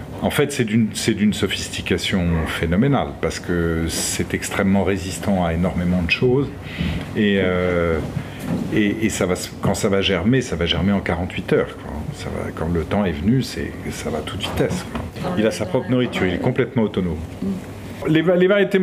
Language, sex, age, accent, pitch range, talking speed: French, male, 50-69, French, 95-130 Hz, 190 wpm